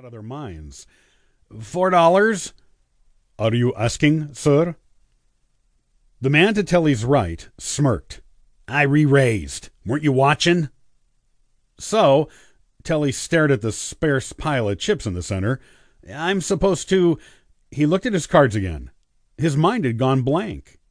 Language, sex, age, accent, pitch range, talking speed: English, male, 50-69, American, 100-155 Hz, 135 wpm